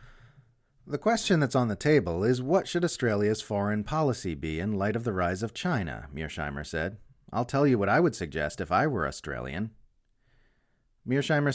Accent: American